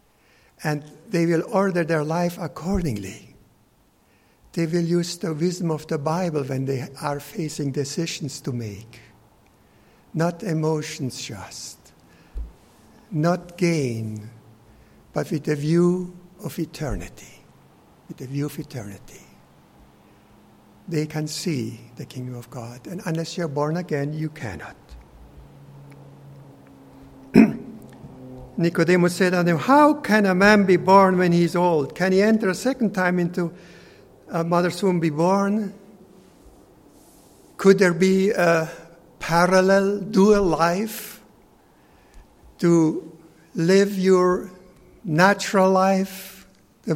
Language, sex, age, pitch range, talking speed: English, male, 60-79, 135-185 Hz, 115 wpm